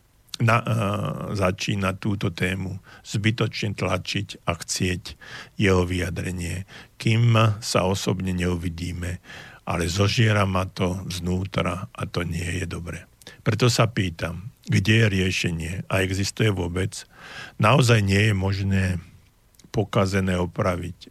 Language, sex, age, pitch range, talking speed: Slovak, male, 50-69, 90-105 Hz, 115 wpm